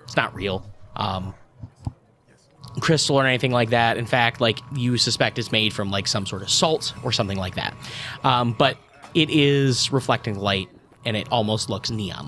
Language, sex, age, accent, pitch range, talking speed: English, male, 20-39, American, 120-150 Hz, 175 wpm